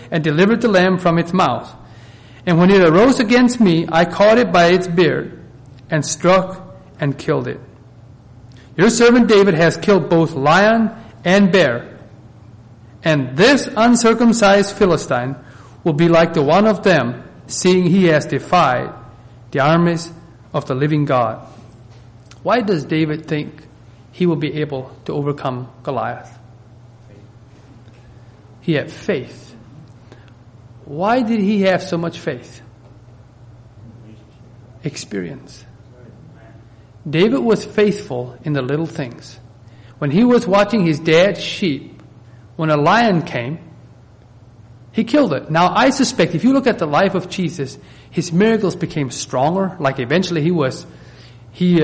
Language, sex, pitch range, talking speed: English, male, 120-185 Hz, 135 wpm